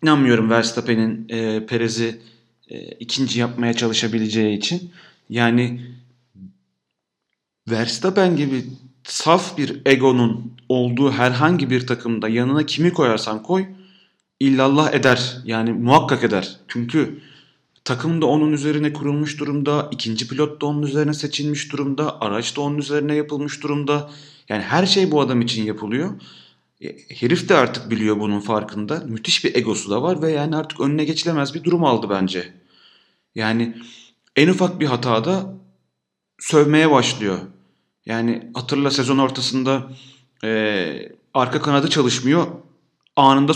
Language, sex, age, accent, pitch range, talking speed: Turkish, male, 30-49, native, 115-150 Hz, 125 wpm